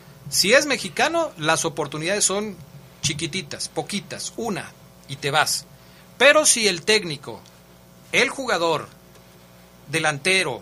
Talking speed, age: 105 wpm, 40-59